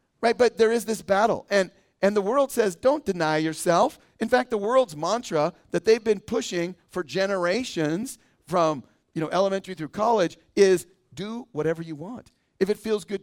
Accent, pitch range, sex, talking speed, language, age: American, 165-210 Hz, male, 180 wpm, English, 40-59